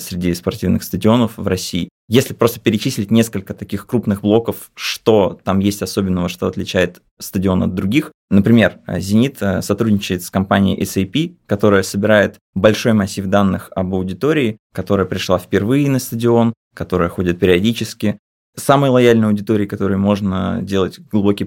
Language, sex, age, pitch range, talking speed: Russian, male, 20-39, 90-105 Hz, 135 wpm